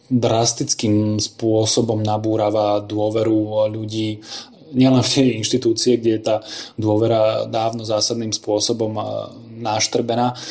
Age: 20-39